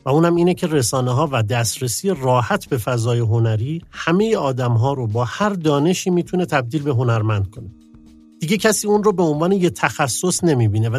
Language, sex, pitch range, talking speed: Persian, male, 115-165 Hz, 185 wpm